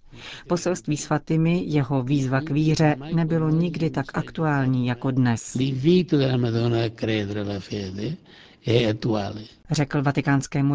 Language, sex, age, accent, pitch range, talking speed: Czech, female, 40-59, native, 135-170 Hz, 85 wpm